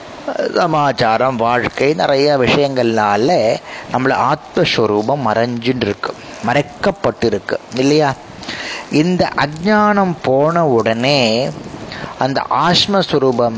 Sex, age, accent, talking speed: male, 30-49, native, 75 wpm